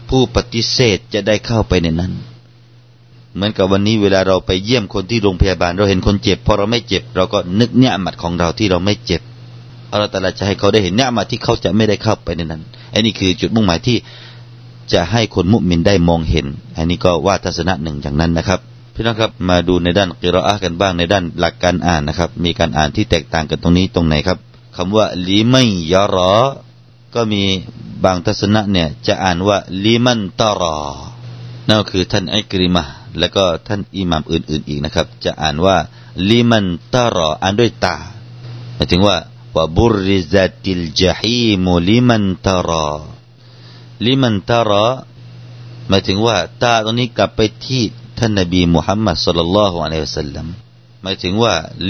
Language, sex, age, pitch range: Thai, male, 30-49, 90-120 Hz